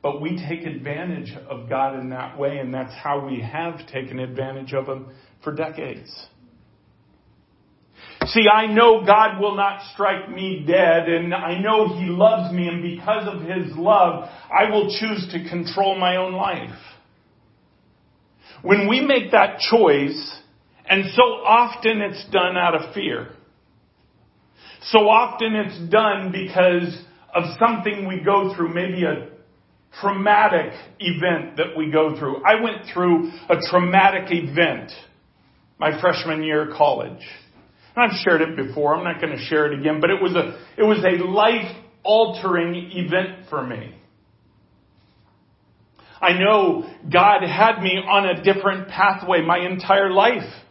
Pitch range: 155-200 Hz